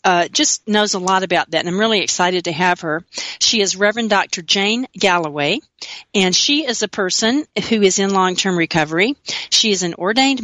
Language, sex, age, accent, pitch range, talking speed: English, female, 40-59, American, 175-215 Hz, 195 wpm